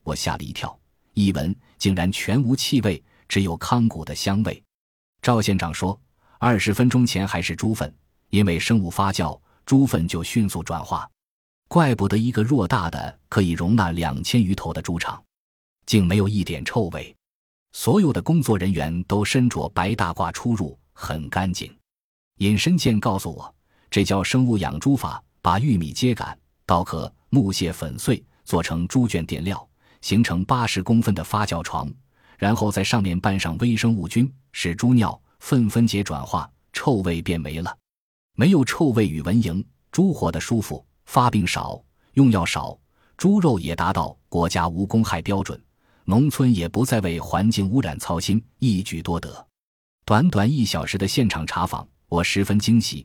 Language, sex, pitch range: Chinese, male, 85-115 Hz